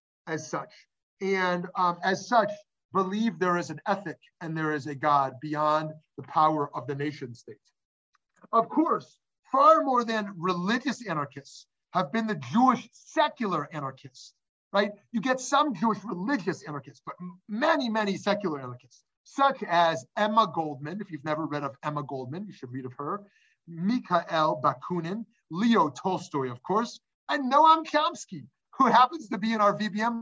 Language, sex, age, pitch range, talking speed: English, male, 30-49, 155-220 Hz, 155 wpm